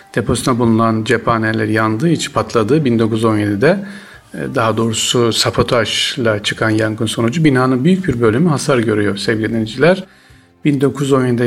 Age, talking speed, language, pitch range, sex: 40-59, 115 wpm, Turkish, 110-145 Hz, male